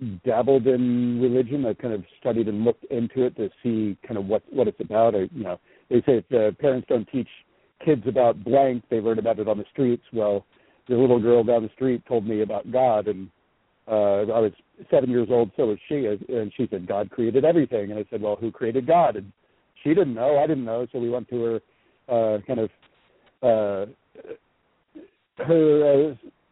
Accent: American